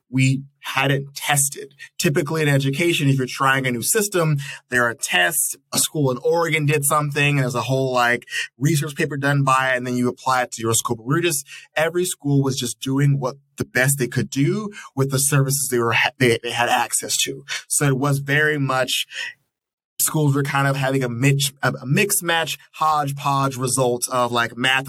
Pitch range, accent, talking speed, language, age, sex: 125-145 Hz, American, 205 wpm, English, 20-39, male